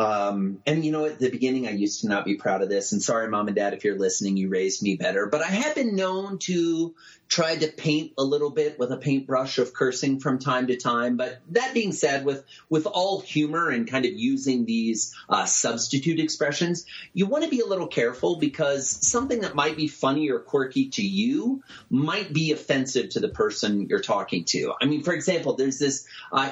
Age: 30-49